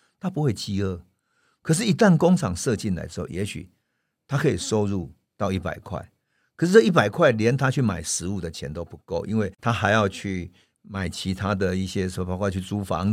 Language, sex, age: Chinese, male, 50-69